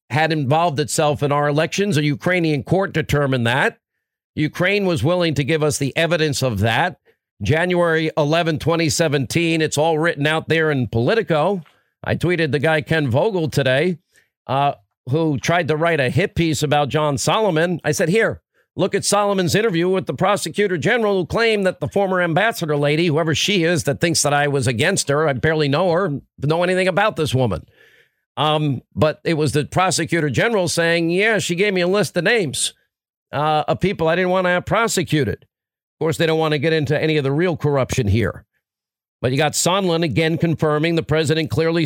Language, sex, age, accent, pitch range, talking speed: English, male, 50-69, American, 150-175 Hz, 190 wpm